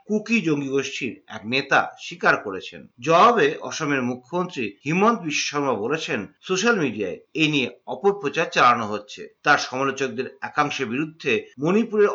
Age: 50-69